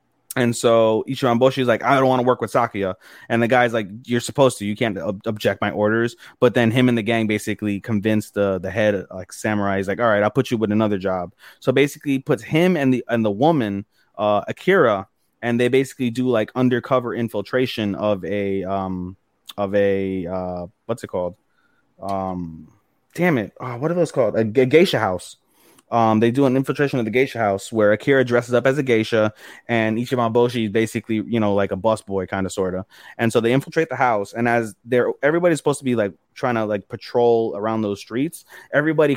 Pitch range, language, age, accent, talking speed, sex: 105-130 Hz, English, 20-39, American, 210 wpm, male